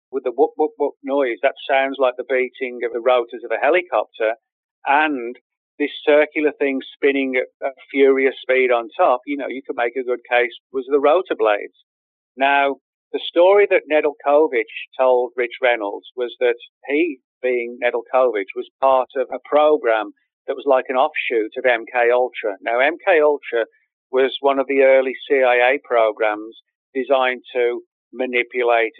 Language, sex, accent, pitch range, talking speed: English, male, British, 120-150 Hz, 165 wpm